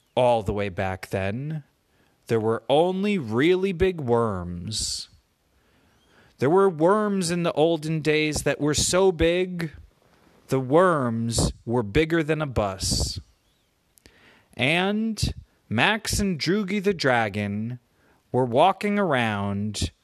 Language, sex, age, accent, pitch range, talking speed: English, male, 30-49, American, 110-175 Hz, 115 wpm